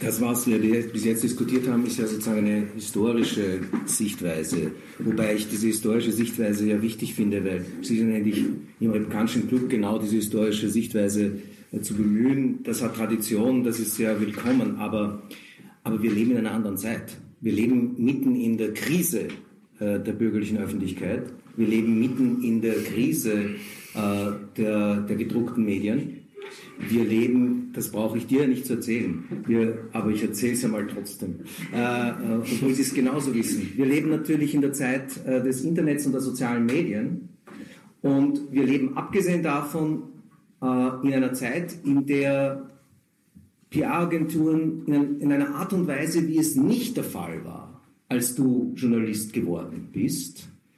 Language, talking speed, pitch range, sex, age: German, 165 wpm, 110-140 Hz, male, 50-69